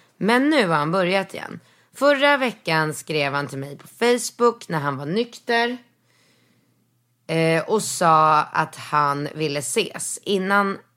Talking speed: 140 wpm